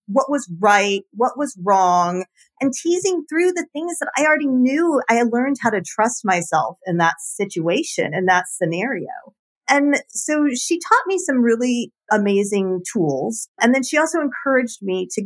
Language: English